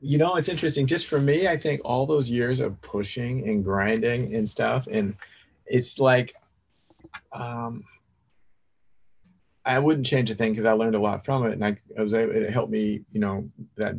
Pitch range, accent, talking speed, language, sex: 110-125 Hz, American, 185 wpm, English, male